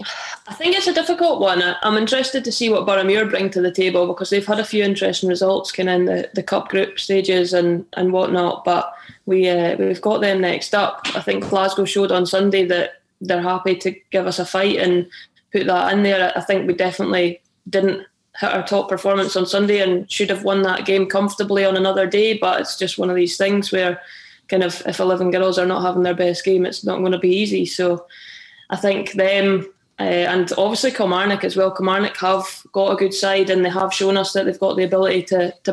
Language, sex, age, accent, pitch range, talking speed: English, female, 20-39, British, 180-195 Hz, 230 wpm